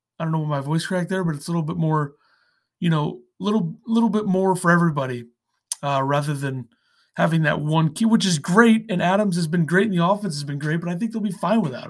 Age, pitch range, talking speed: 30-49, 165-205 Hz, 250 wpm